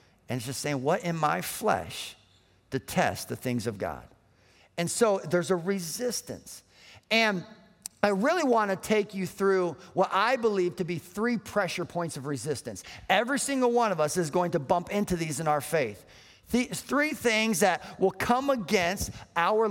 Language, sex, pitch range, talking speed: English, male, 165-225 Hz, 175 wpm